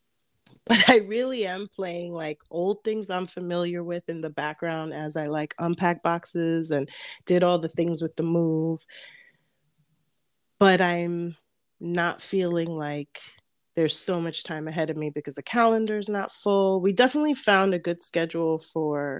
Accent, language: American, English